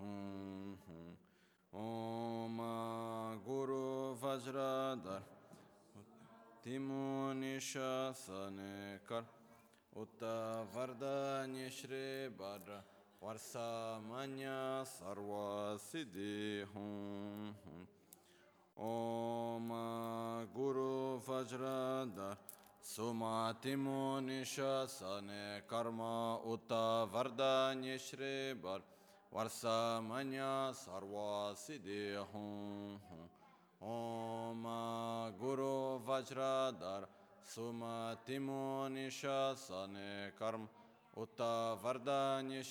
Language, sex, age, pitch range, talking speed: Italian, male, 30-49, 105-130 Hz, 40 wpm